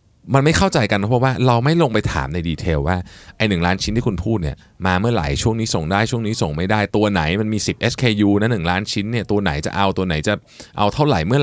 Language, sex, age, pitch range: Thai, male, 20-39, 90-120 Hz